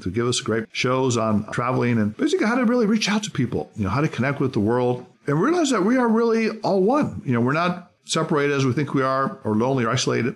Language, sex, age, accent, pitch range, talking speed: English, male, 50-69, American, 115-155 Hz, 265 wpm